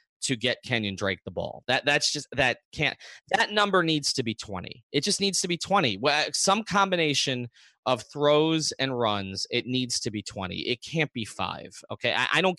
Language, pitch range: English, 120-180 Hz